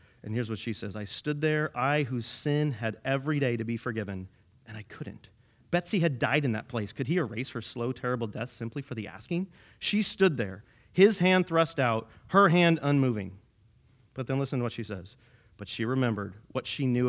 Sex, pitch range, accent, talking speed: male, 115-150 Hz, American, 210 wpm